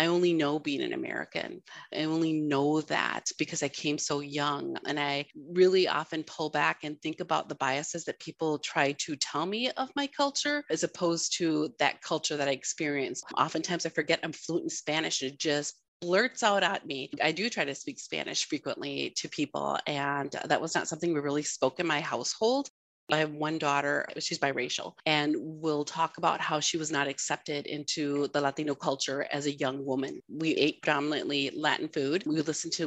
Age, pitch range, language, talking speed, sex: 30-49, 145-160 Hz, English, 195 wpm, female